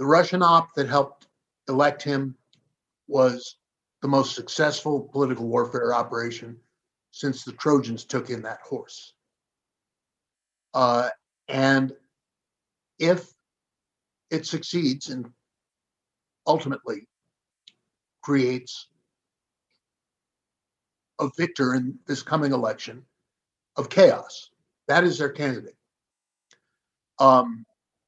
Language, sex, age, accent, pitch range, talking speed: English, male, 60-79, American, 125-150 Hz, 90 wpm